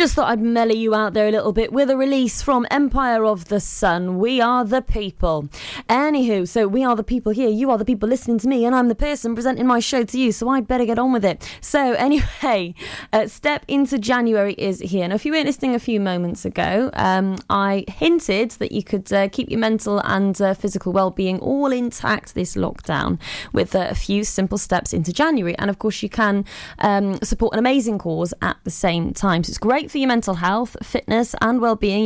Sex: female